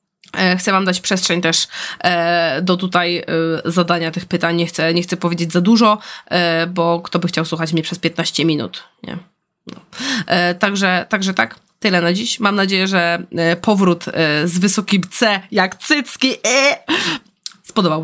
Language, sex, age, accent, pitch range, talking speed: Polish, female, 20-39, native, 180-220 Hz, 140 wpm